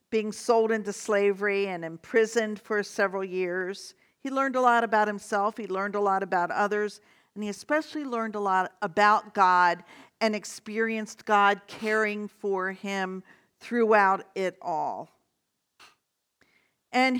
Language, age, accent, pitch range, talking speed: English, 50-69, American, 200-240 Hz, 135 wpm